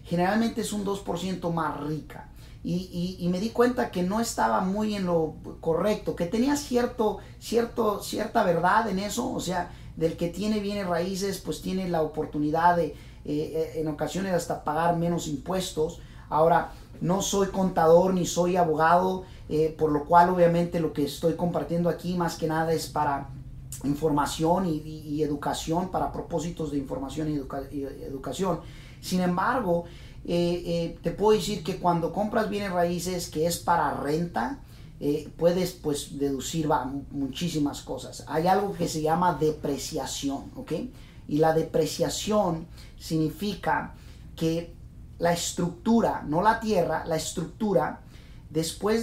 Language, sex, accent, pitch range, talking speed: Spanish, male, Mexican, 155-185 Hz, 150 wpm